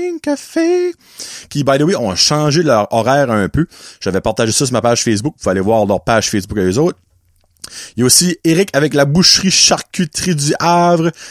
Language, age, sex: French, 30-49, male